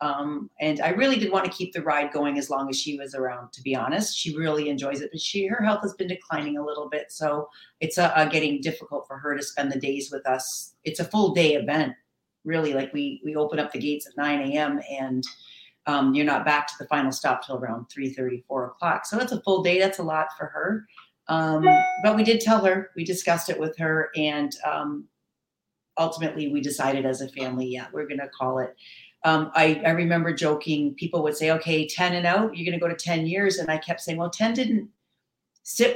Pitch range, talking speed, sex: 145-170 Hz, 235 wpm, female